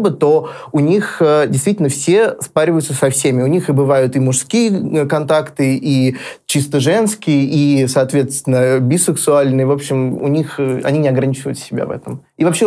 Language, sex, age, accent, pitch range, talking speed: Russian, male, 20-39, native, 135-155 Hz, 155 wpm